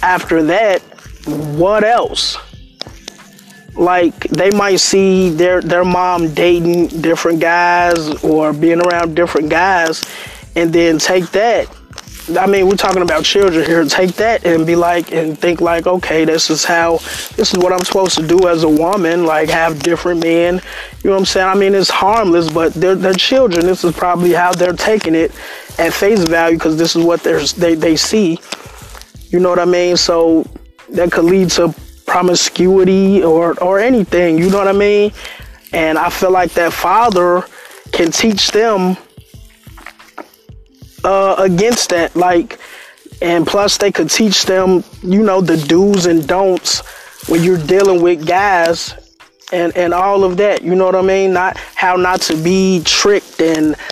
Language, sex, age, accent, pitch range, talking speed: English, male, 20-39, American, 165-190 Hz, 170 wpm